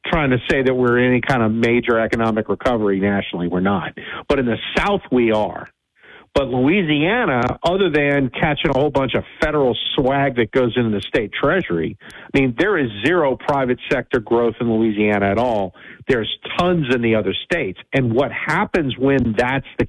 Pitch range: 120-165 Hz